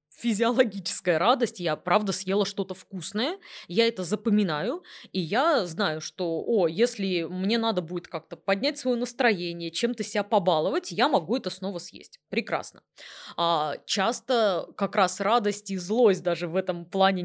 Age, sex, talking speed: 20-39, female, 145 wpm